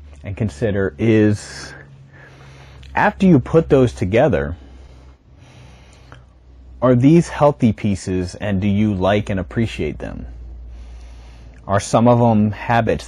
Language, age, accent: English, 30-49, American